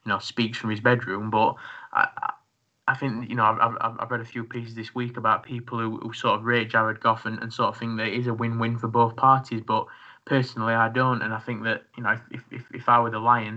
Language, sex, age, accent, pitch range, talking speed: English, male, 20-39, British, 110-125 Hz, 275 wpm